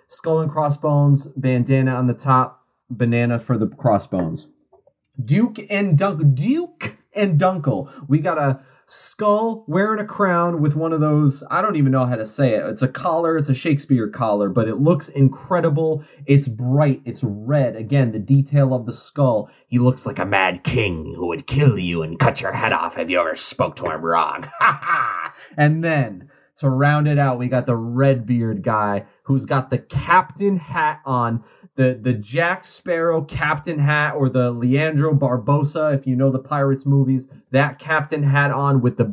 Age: 30-49